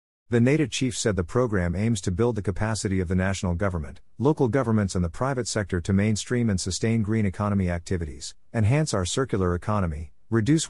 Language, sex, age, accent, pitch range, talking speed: English, male, 50-69, American, 90-115 Hz, 185 wpm